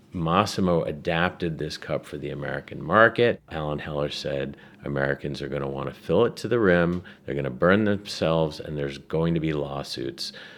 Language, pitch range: English, 75-105 Hz